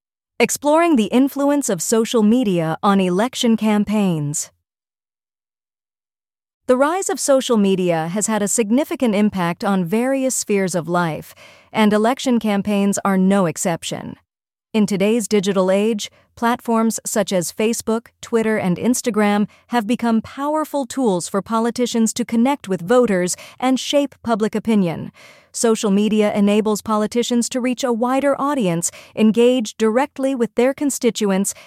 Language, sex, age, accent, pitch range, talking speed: English, female, 40-59, American, 195-245 Hz, 130 wpm